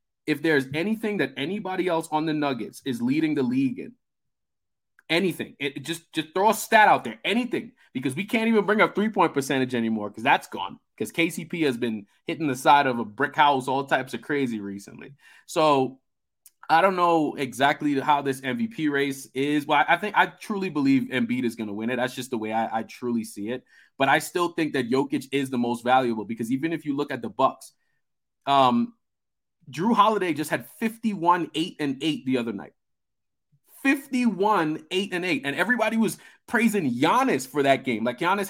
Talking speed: 200 wpm